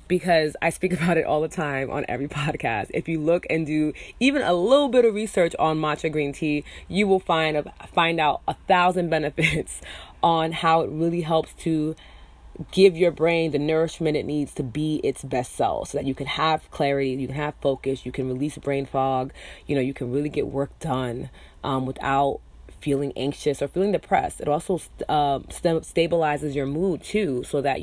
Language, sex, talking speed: English, female, 200 wpm